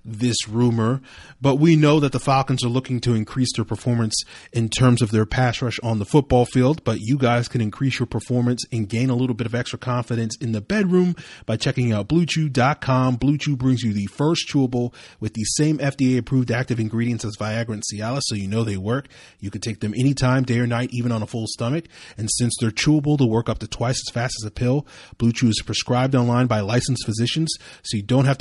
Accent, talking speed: American, 220 wpm